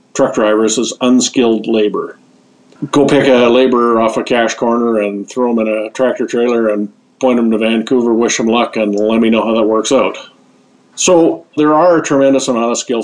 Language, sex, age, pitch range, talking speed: English, male, 50-69, 110-130 Hz, 200 wpm